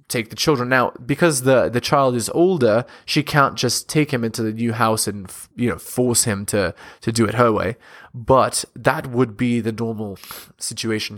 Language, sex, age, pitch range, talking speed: English, male, 20-39, 125-185 Hz, 205 wpm